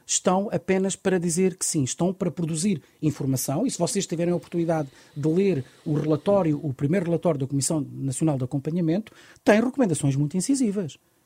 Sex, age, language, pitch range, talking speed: male, 40-59, Portuguese, 145-200 Hz, 170 wpm